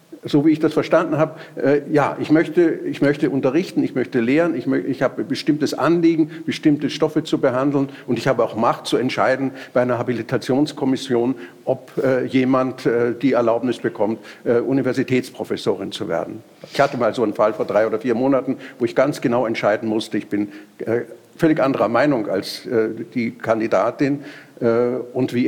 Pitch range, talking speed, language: 120-155 Hz, 180 wpm, German